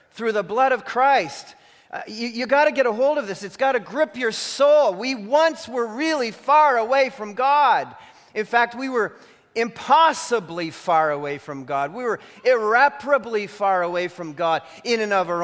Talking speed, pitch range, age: 185 wpm, 190-260 Hz, 40-59